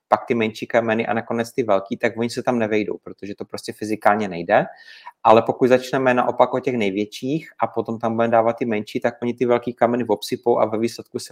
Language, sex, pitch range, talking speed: Czech, male, 105-120 Hz, 225 wpm